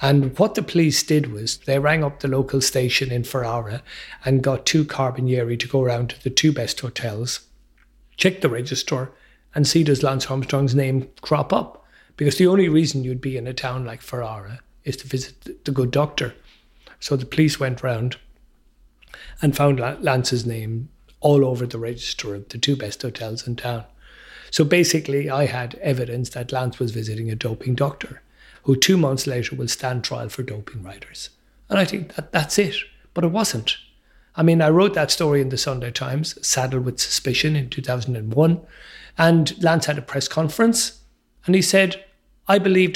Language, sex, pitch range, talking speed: English, male, 125-170 Hz, 185 wpm